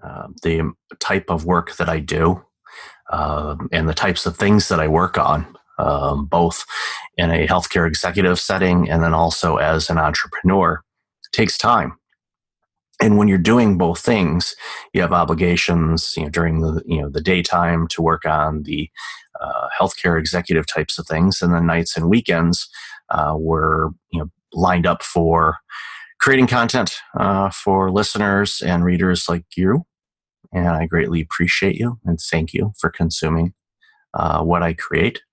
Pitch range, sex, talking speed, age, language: 80-105 Hz, male, 160 wpm, 30-49, English